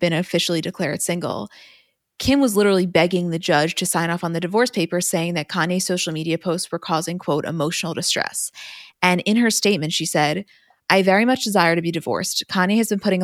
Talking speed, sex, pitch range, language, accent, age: 205 wpm, female, 165-190 Hz, English, American, 20-39